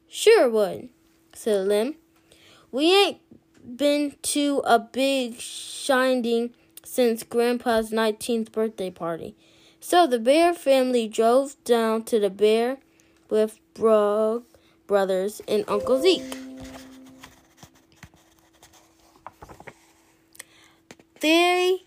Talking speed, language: 90 wpm, English